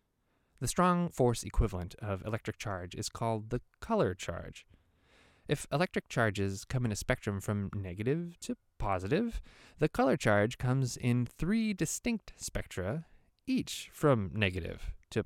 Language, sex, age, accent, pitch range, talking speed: English, male, 20-39, American, 95-135 Hz, 140 wpm